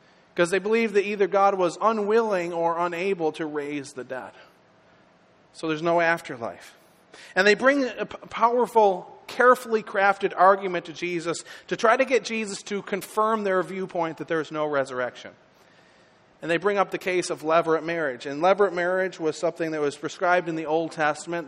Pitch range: 155-185 Hz